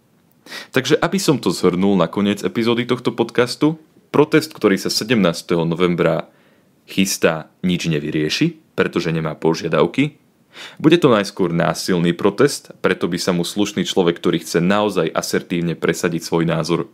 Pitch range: 85-105 Hz